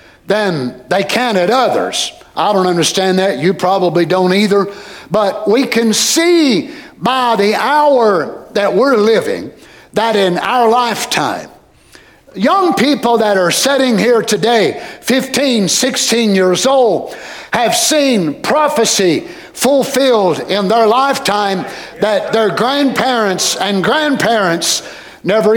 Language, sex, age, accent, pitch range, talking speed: English, male, 60-79, American, 200-270 Hz, 120 wpm